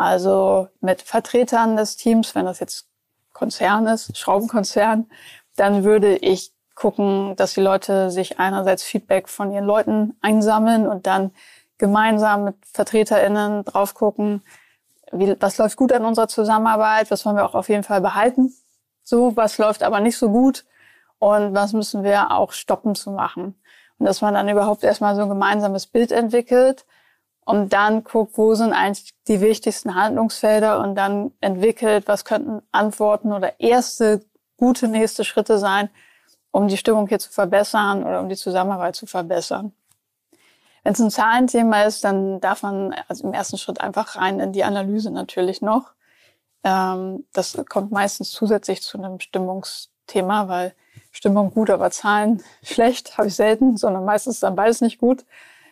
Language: German